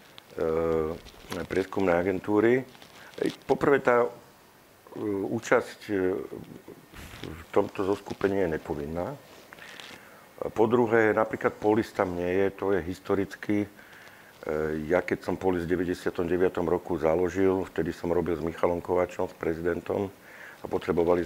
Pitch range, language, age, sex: 85-100 Hz, Slovak, 50-69, male